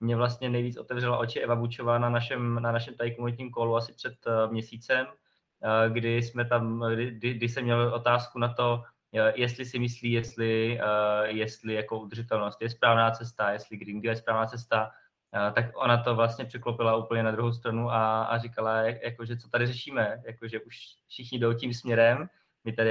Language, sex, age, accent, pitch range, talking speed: Czech, male, 20-39, native, 110-120 Hz, 180 wpm